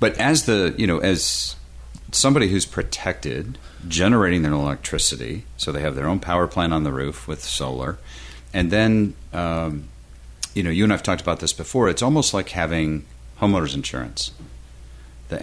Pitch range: 65-85 Hz